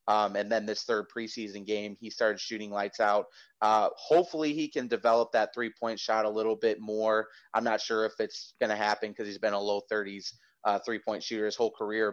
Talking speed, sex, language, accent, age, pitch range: 220 wpm, male, English, American, 30-49, 105-115 Hz